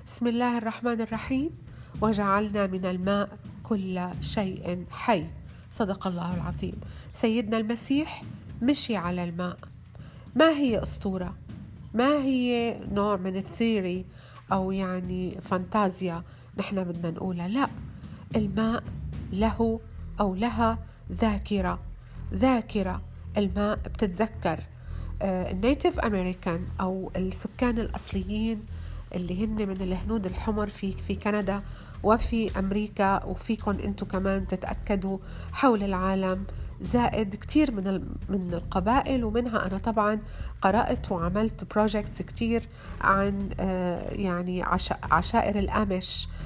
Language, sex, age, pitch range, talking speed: Arabic, female, 40-59, 185-220 Hz, 100 wpm